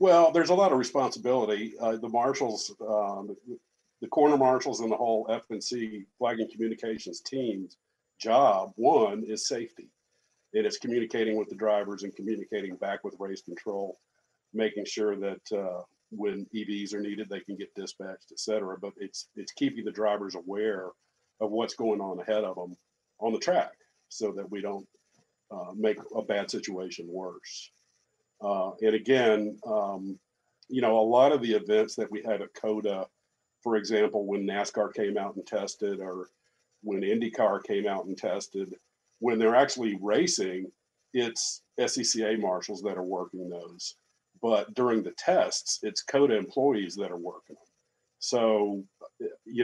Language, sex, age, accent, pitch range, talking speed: English, male, 50-69, American, 100-125 Hz, 160 wpm